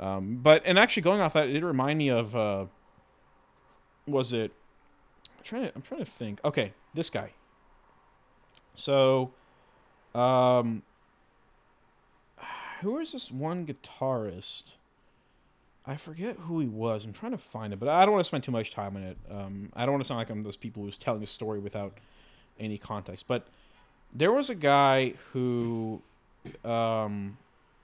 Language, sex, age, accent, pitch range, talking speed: English, male, 30-49, American, 105-155 Hz, 170 wpm